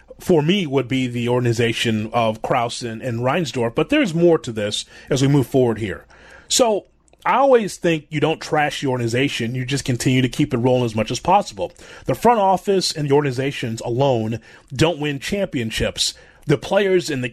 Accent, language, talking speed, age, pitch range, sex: American, English, 190 wpm, 30-49, 120-160 Hz, male